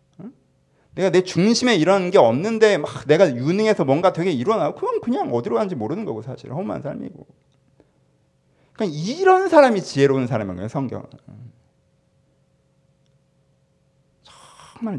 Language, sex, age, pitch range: Korean, male, 40-59, 120-145 Hz